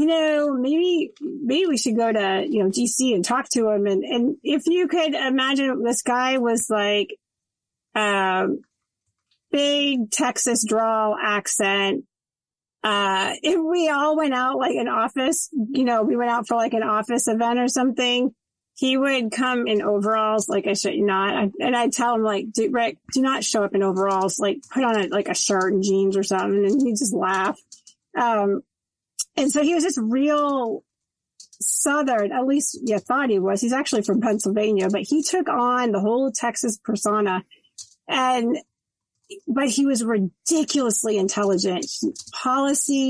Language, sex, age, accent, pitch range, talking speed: English, female, 30-49, American, 205-260 Hz, 170 wpm